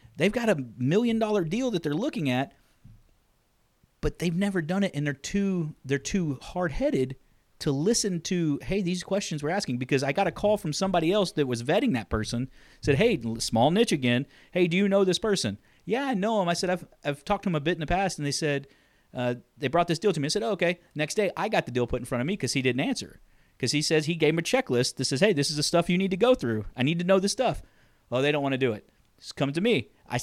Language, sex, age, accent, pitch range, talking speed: English, male, 40-59, American, 135-195 Hz, 270 wpm